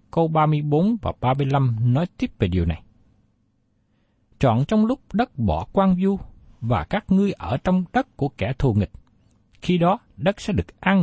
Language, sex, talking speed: Vietnamese, male, 185 wpm